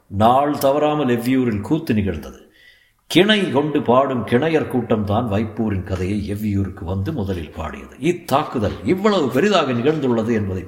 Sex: male